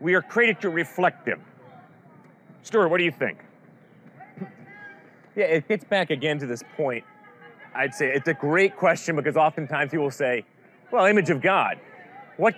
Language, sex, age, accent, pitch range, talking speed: English, male, 30-49, American, 140-195 Hz, 160 wpm